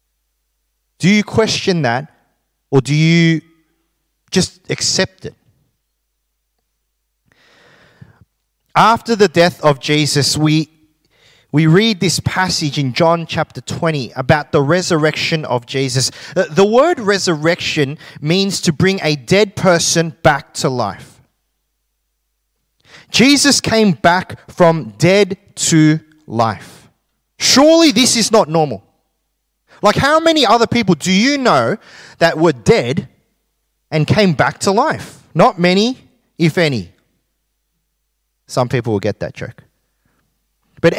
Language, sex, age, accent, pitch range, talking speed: English, male, 30-49, Australian, 145-200 Hz, 115 wpm